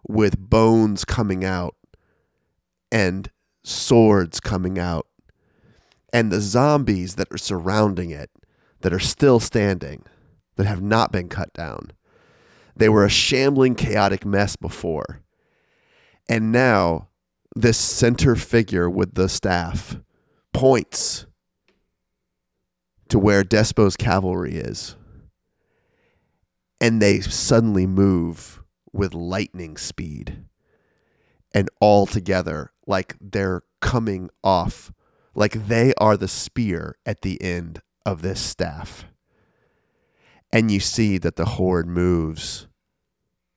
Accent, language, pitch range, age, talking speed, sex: American, English, 90-110 Hz, 30-49, 105 wpm, male